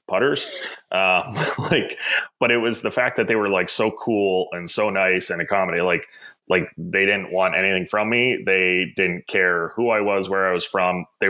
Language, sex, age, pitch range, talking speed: English, male, 20-39, 85-100 Hz, 200 wpm